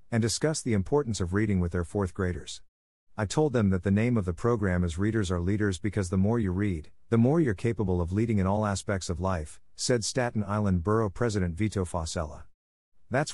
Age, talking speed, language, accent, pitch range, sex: 50-69, 210 wpm, English, American, 90-115 Hz, male